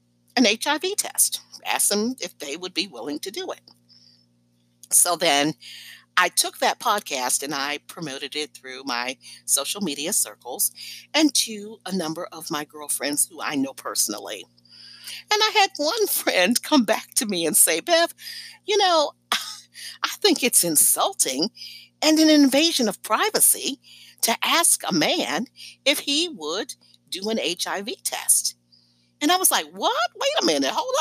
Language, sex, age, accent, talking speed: English, female, 50-69, American, 160 wpm